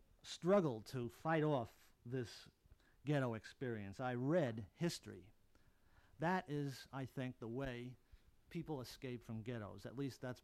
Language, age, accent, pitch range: English, 50-69, American, 110-150 Hz